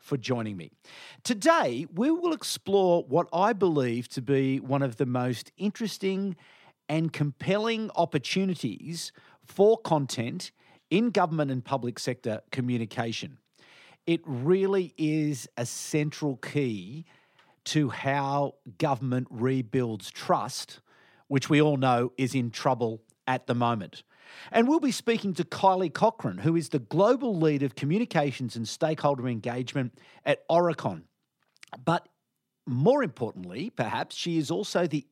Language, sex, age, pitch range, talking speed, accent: English, male, 50-69, 125-175 Hz, 130 wpm, Australian